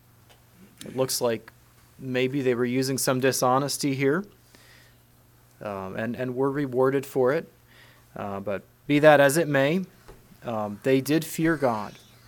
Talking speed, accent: 140 wpm, American